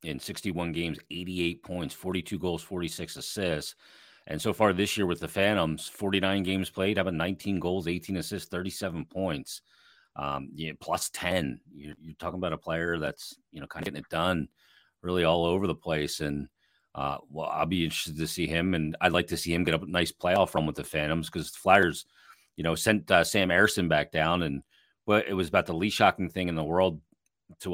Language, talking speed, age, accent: English, 210 wpm, 30-49, American